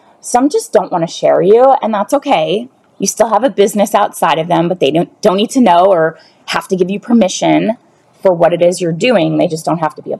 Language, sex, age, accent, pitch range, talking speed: English, female, 20-39, American, 165-210 Hz, 260 wpm